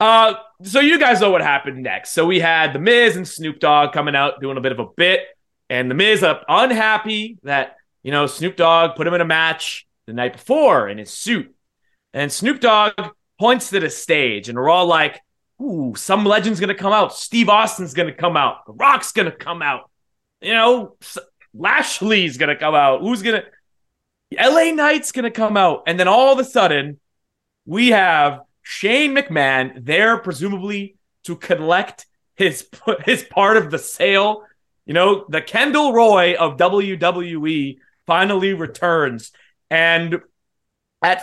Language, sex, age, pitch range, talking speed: English, male, 30-49, 140-215 Hz, 175 wpm